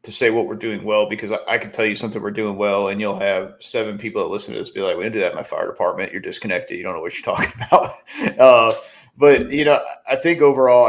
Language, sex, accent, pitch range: English, male, American, 105-175 Hz